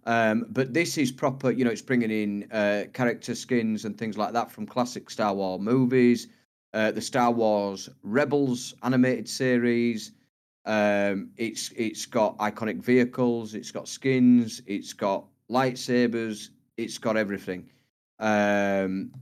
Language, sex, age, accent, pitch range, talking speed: English, male, 30-49, British, 105-130 Hz, 140 wpm